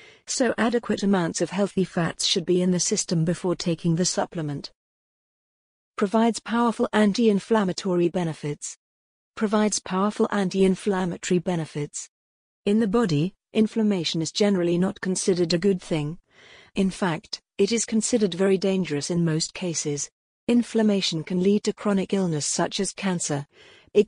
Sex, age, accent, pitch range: female, 40-59, British, 170-205 Hz